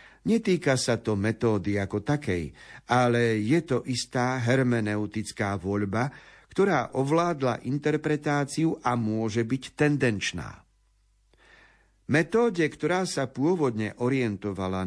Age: 50-69